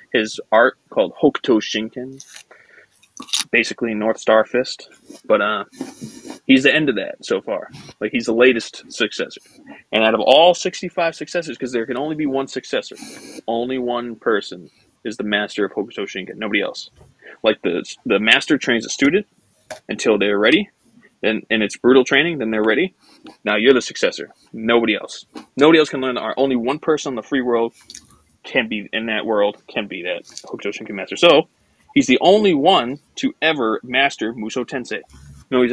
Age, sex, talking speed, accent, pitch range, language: 20-39, male, 180 wpm, American, 110-155 Hz, English